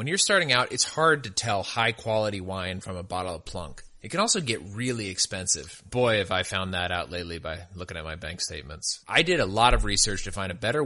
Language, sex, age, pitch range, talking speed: English, male, 30-49, 95-140 Hz, 245 wpm